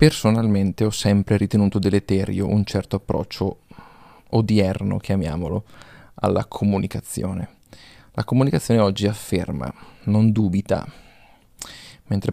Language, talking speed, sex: Italian, 90 wpm, male